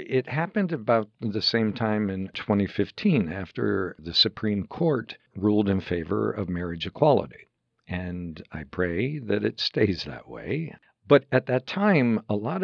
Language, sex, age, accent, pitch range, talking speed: English, male, 60-79, American, 95-120 Hz, 150 wpm